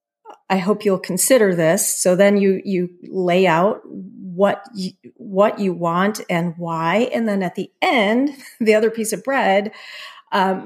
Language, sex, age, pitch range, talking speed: English, female, 40-59, 180-220 Hz, 165 wpm